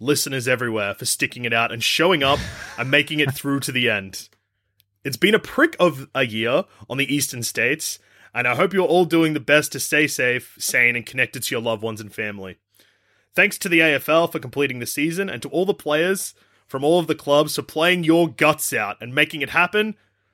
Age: 20-39